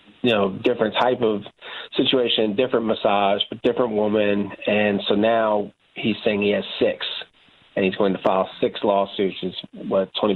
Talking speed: 175 wpm